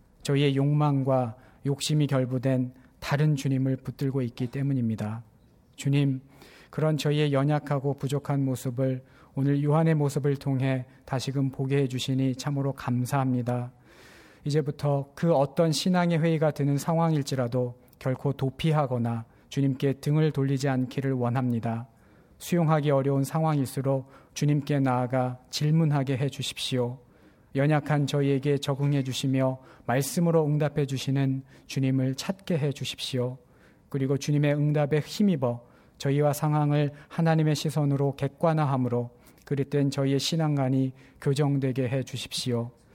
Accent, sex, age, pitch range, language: native, male, 40-59, 130-145 Hz, Korean